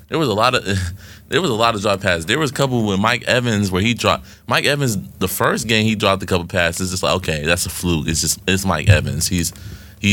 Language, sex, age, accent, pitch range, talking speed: English, male, 20-39, American, 90-125 Hz, 265 wpm